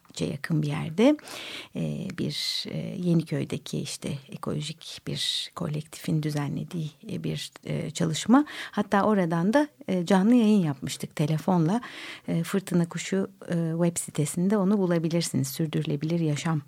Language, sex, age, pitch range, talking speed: Turkish, female, 60-79, 160-225 Hz, 95 wpm